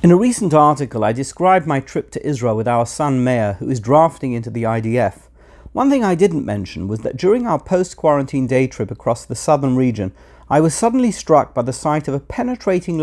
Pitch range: 125-180 Hz